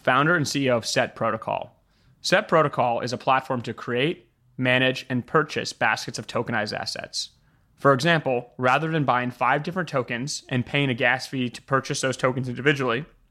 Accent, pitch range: American, 120-140 Hz